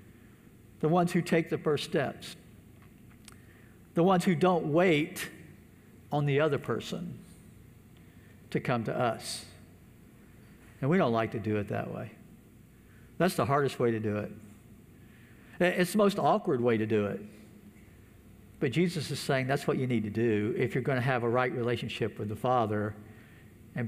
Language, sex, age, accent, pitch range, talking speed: English, male, 60-79, American, 115-190 Hz, 165 wpm